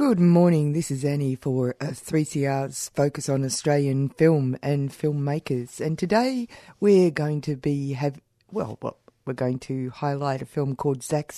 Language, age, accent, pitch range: English, 50-69, Australian, 130-150 Hz